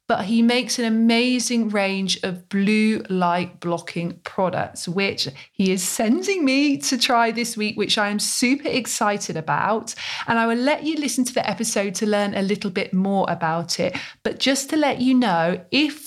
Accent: British